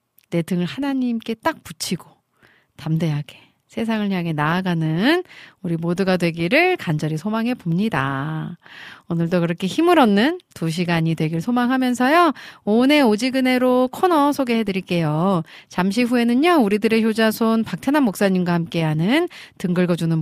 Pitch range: 170-265 Hz